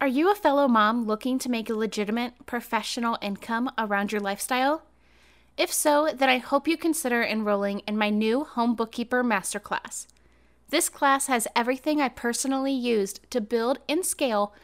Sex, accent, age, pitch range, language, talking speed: female, American, 10-29, 205-270 Hz, English, 165 wpm